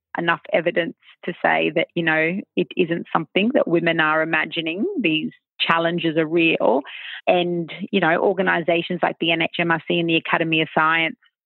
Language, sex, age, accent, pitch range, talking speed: English, female, 30-49, Australian, 165-195 Hz, 155 wpm